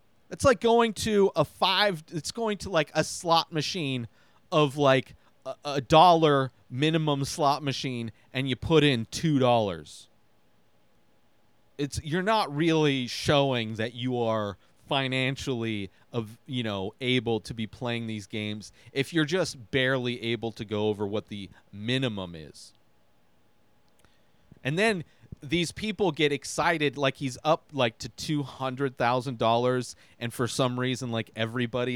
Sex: male